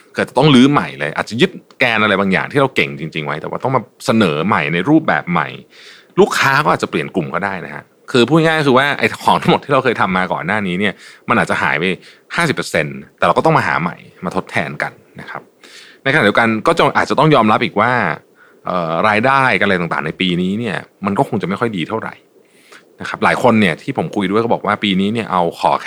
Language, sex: Thai, male